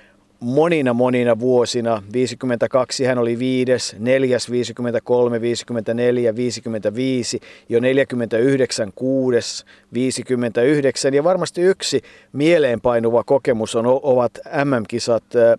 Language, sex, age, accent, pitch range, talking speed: Finnish, male, 50-69, native, 115-140 Hz, 85 wpm